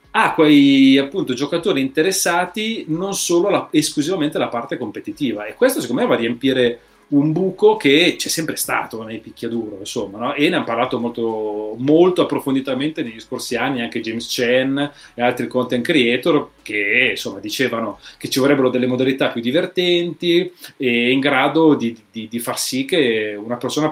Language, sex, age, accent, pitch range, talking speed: English, male, 30-49, Italian, 115-155 Hz, 170 wpm